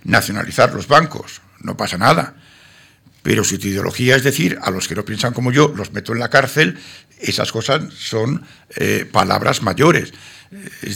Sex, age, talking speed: male, 60-79, 170 wpm